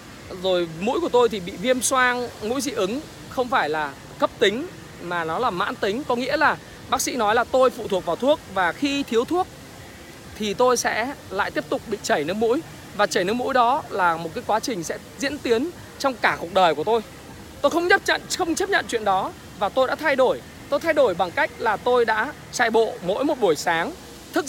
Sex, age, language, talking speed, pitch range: male, 20-39, Vietnamese, 235 wpm, 195-265 Hz